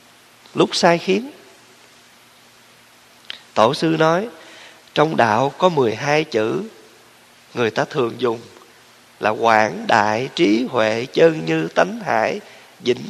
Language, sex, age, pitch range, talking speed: Vietnamese, male, 20-39, 120-175 Hz, 115 wpm